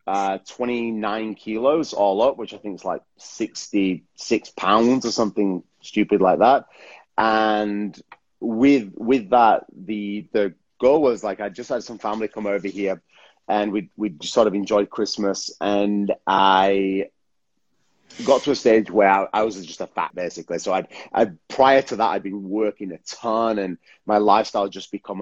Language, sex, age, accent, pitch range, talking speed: English, male, 30-49, British, 95-110 Hz, 170 wpm